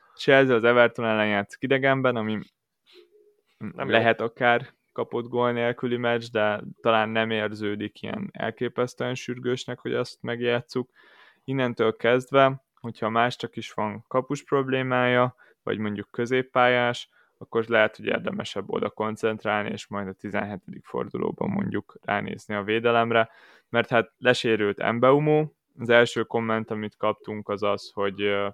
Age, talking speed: 20-39, 130 wpm